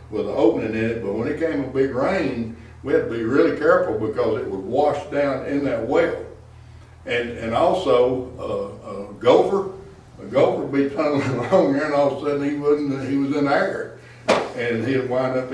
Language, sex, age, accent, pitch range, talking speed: English, male, 60-79, American, 115-140 Hz, 210 wpm